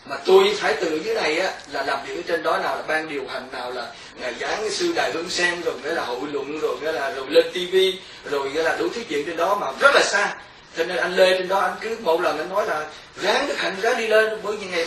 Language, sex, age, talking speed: Vietnamese, male, 20-39, 285 wpm